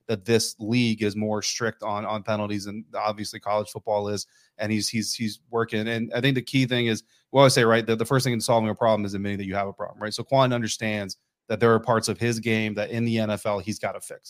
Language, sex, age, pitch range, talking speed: English, male, 30-49, 100-115 Hz, 270 wpm